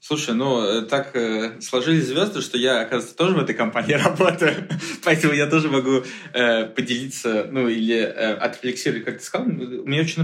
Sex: male